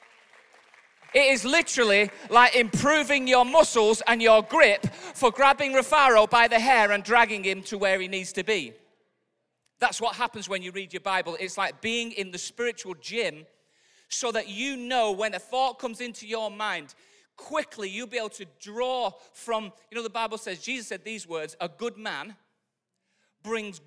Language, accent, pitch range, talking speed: English, British, 190-240 Hz, 180 wpm